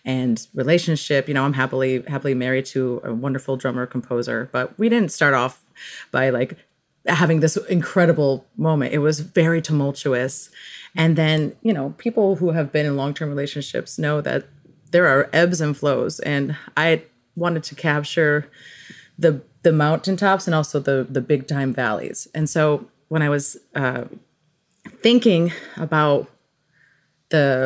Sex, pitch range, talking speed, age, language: female, 140-165 Hz, 150 wpm, 30-49, English